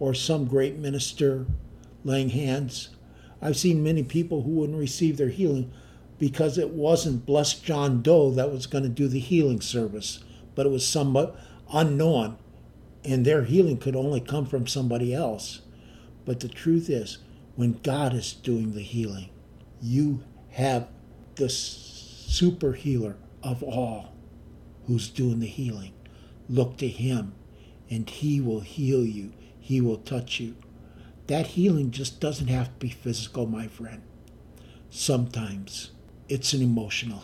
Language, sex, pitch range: English, male, 115-140 Hz